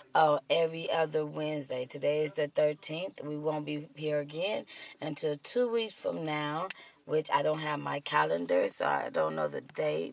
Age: 20-39